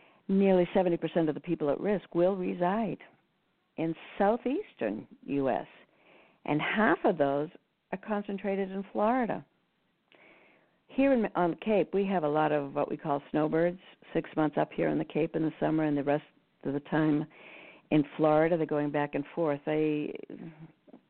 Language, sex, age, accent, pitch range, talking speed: English, female, 60-79, American, 150-195 Hz, 170 wpm